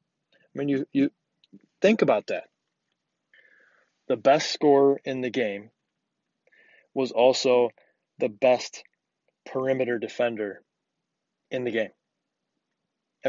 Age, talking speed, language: 20-39, 95 wpm, English